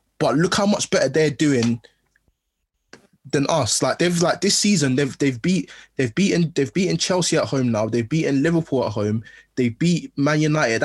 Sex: male